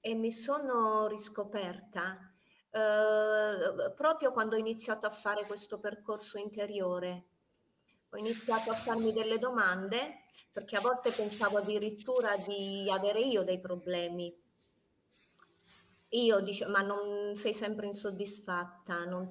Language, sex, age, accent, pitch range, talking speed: Italian, female, 30-49, native, 185-225 Hz, 120 wpm